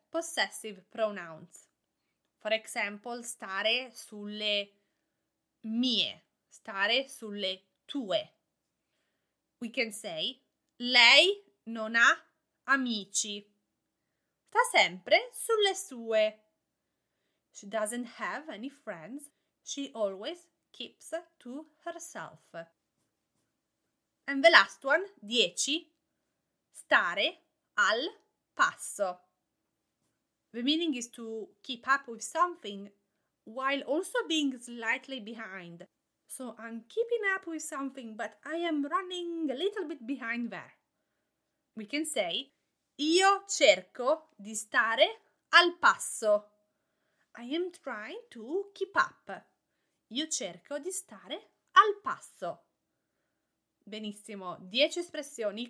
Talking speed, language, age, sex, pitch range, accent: 100 wpm, English, 20-39, female, 215-320 Hz, Italian